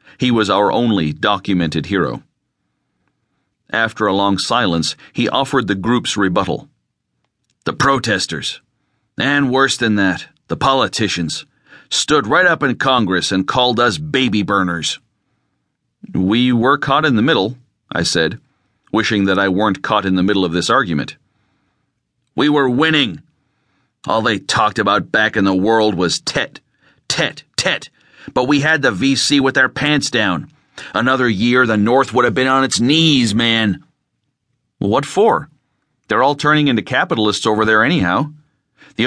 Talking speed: 150 wpm